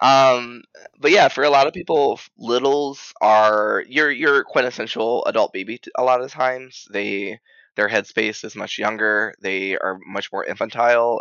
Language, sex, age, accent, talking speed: English, male, 20-39, American, 165 wpm